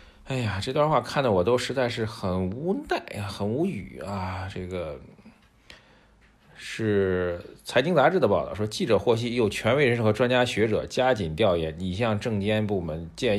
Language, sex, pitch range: Chinese, male, 95-125 Hz